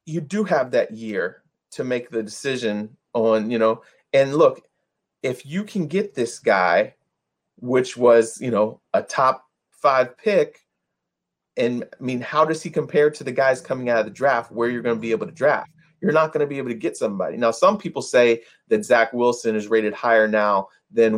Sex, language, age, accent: male, English, 30-49, American